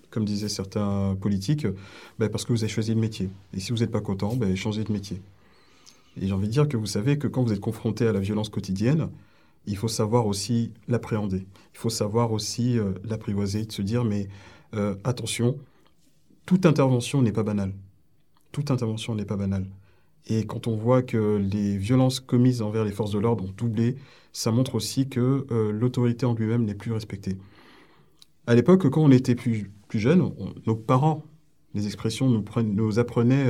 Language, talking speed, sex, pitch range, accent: French, 190 wpm, male, 105-135 Hz, French